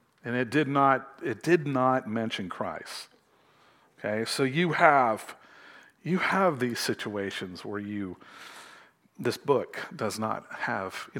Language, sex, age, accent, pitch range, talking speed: English, male, 50-69, American, 110-135 Hz, 135 wpm